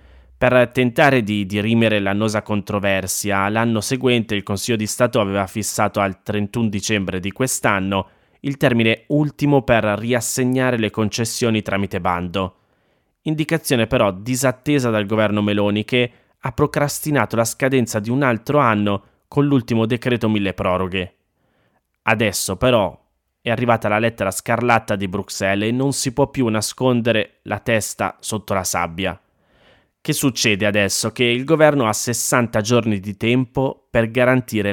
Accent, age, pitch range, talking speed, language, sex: native, 20-39, 100-125 Hz, 140 wpm, Italian, male